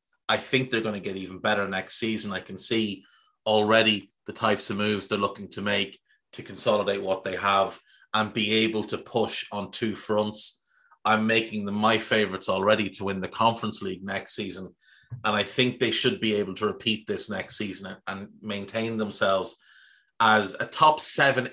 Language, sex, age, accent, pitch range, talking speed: English, male, 30-49, Irish, 100-120 Hz, 185 wpm